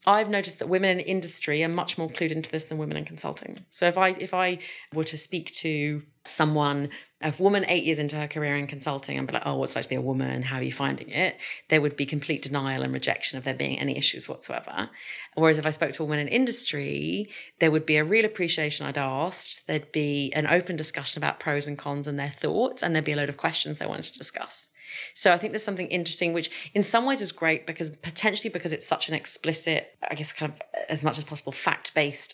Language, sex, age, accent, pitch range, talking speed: English, female, 30-49, British, 145-175 Hz, 245 wpm